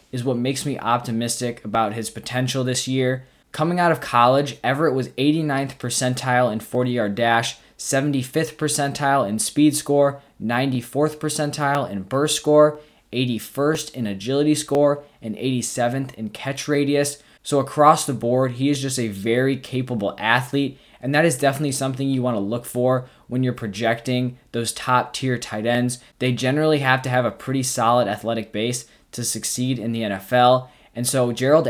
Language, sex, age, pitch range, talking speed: English, male, 20-39, 115-140 Hz, 165 wpm